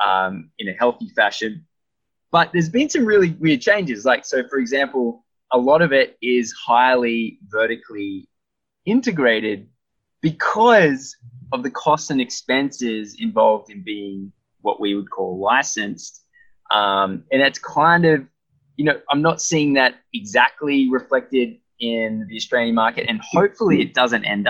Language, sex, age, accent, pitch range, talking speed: English, male, 20-39, Australian, 110-160 Hz, 145 wpm